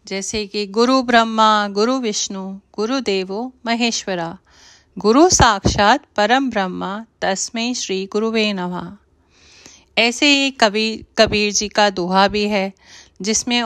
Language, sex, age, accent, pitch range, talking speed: Hindi, female, 30-49, native, 205-255 Hz, 120 wpm